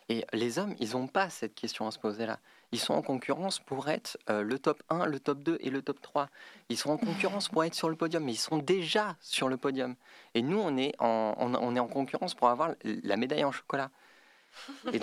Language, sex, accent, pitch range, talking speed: French, male, French, 120-165 Hz, 245 wpm